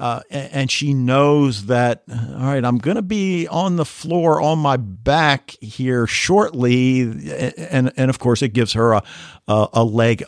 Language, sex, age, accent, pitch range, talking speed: English, male, 50-69, American, 105-145 Hz, 170 wpm